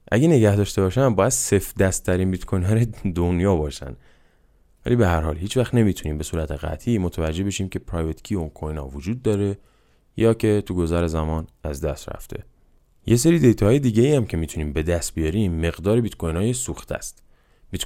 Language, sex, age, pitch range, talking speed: Persian, male, 20-39, 80-105 Hz, 195 wpm